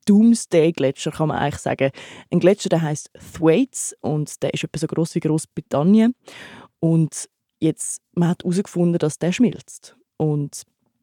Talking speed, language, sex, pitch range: 140 wpm, German, female, 160-185 Hz